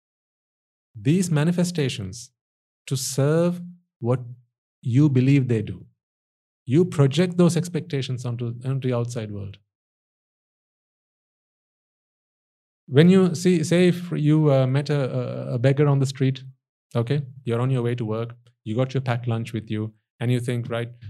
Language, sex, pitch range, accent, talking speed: English, male, 115-140 Hz, Indian, 140 wpm